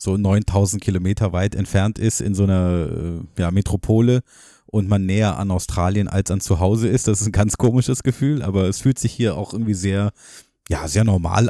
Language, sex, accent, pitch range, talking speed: German, male, German, 95-110 Hz, 195 wpm